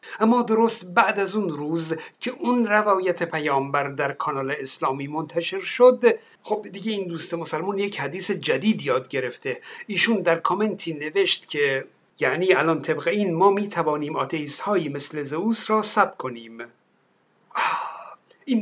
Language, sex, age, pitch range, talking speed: Persian, male, 60-79, 160-235 Hz, 145 wpm